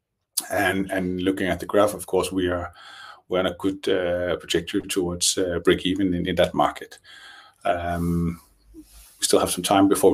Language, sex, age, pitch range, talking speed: Danish, male, 30-49, 100-140 Hz, 185 wpm